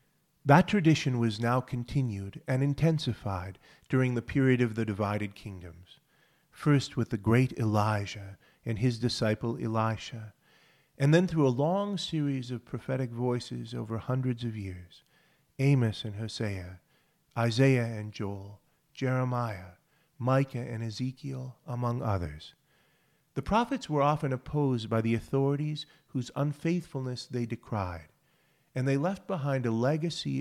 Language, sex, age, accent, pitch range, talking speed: English, male, 40-59, American, 110-145 Hz, 130 wpm